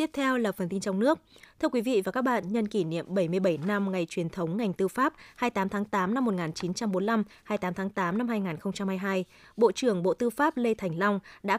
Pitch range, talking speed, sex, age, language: 190-245 Hz, 225 wpm, female, 20-39, Vietnamese